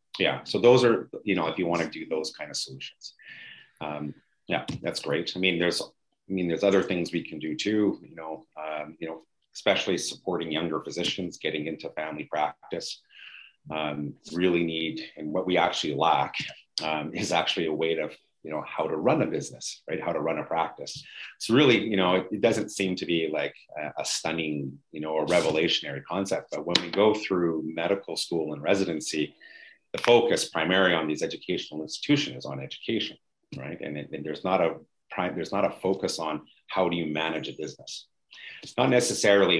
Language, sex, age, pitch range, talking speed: English, male, 30-49, 80-95 Hz, 195 wpm